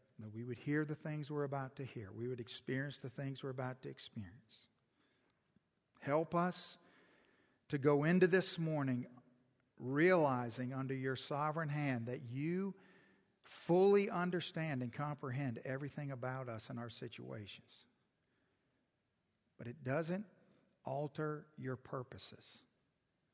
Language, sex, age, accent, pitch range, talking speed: English, male, 50-69, American, 120-145 Hz, 125 wpm